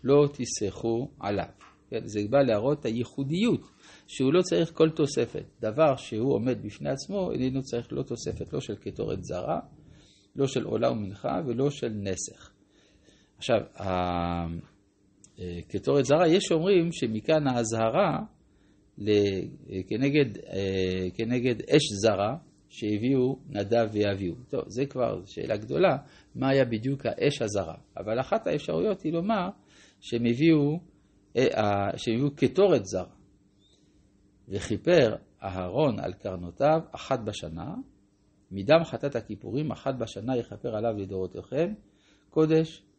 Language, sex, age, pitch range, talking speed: Hebrew, male, 50-69, 100-145 Hz, 115 wpm